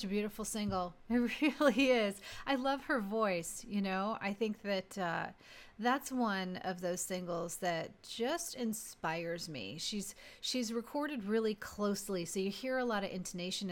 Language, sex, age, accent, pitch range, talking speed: English, female, 30-49, American, 190-250 Hz, 160 wpm